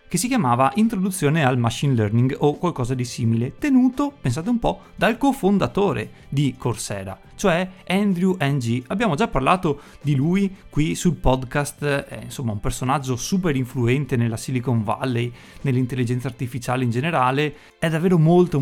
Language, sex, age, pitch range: Italian, male, 30-49, 120-150 Hz